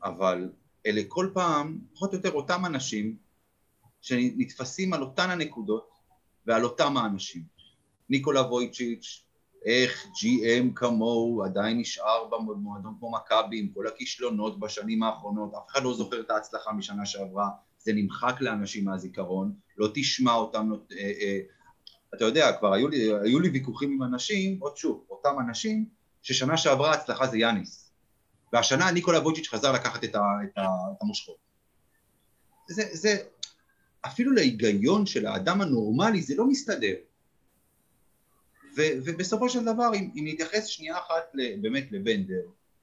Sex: male